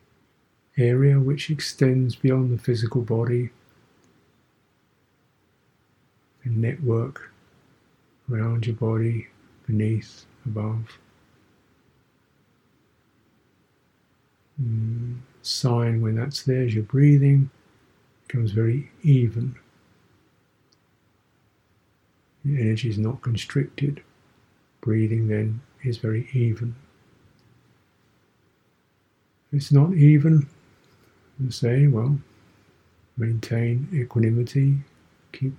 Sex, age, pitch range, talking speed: male, 50-69, 110-135 Hz, 75 wpm